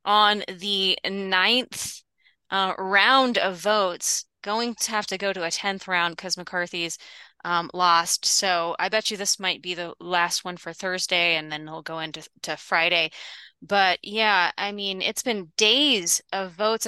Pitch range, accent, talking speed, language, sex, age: 175-215 Hz, American, 175 wpm, English, female, 20-39